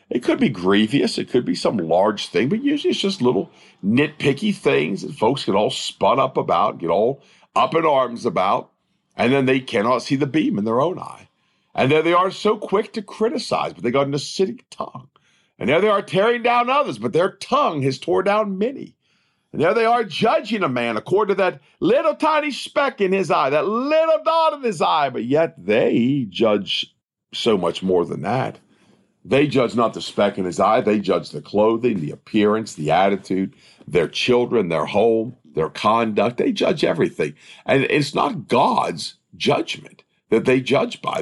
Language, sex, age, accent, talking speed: English, male, 50-69, American, 195 wpm